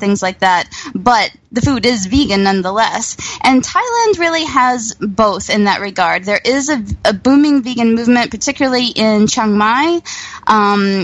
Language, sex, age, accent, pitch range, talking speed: English, female, 20-39, American, 205-250 Hz, 160 wpm